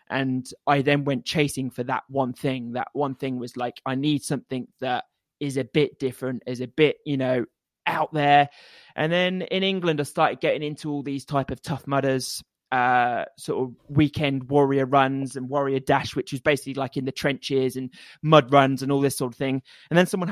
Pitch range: 130-150 Hz